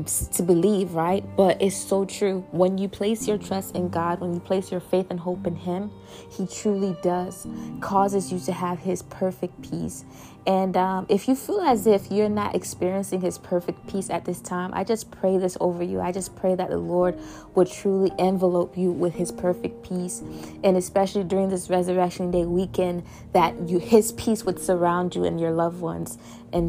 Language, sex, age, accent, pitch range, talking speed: English, female, 20-39, American, 175-195 Hz, 200 wpm